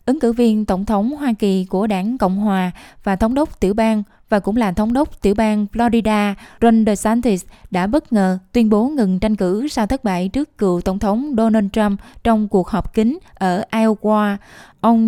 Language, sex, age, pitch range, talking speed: Vietnamese, female, 20-39, 190-225 Hz, 200 wpm